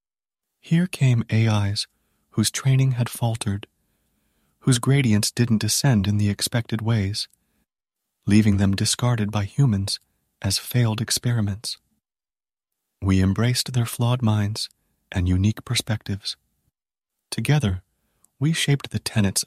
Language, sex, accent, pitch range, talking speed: English, male, American, 100-120 Hz, 110 wpm